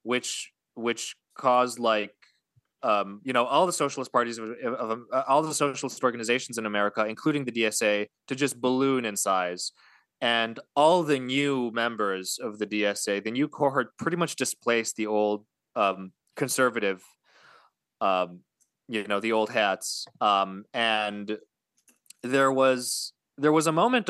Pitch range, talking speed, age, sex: 105-130 Hz, 150 wpm, 20-39, male